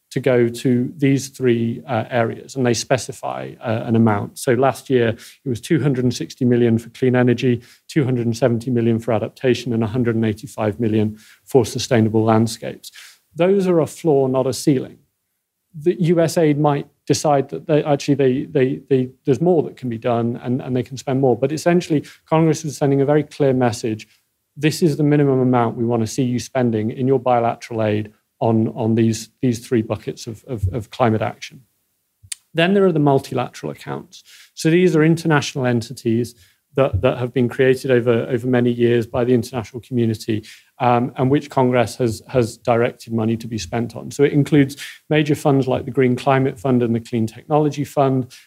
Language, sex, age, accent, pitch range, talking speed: English, male, 40-59, British, 115-135 Hz, 180 wpm